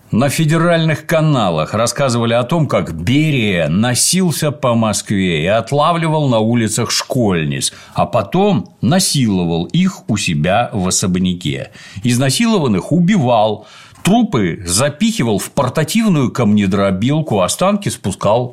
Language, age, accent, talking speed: Russian, 50-69, native, 105 wpm